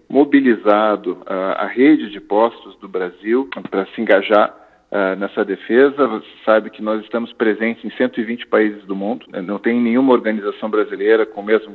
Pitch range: 105-175 Hz